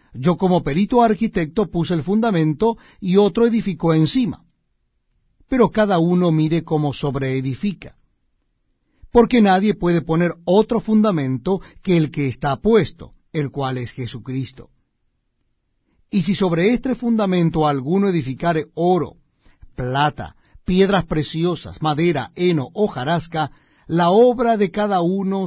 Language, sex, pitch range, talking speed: Spanish, male, 145-190 Hz, 125 wpm